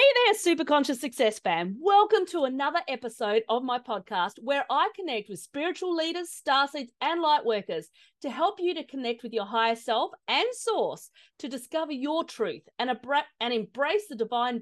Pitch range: 225-320 Hz